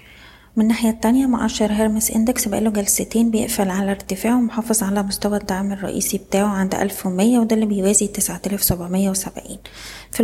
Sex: female